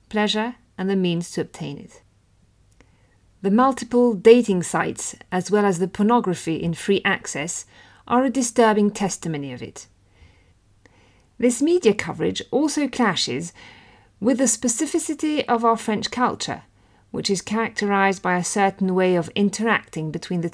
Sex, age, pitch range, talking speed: female, 50-69, 160-235 Hz, 140 wpm